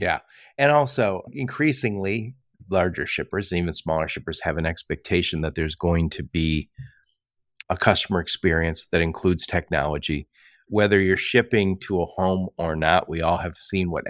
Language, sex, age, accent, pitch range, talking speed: English, male, 50-69, American, 90-125 Hz, 160 wpm